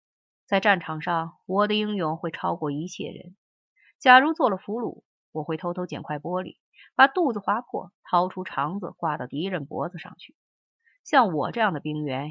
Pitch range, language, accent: 155-210 Hz, Chinese, native